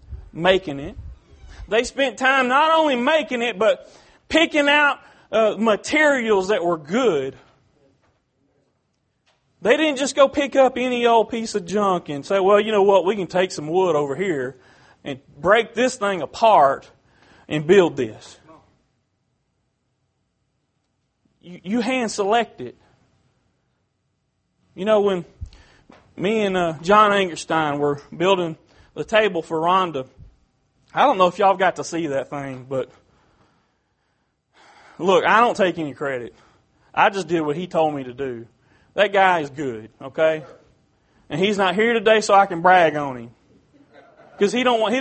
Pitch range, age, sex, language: 145-230 Hz, 40-59, male, English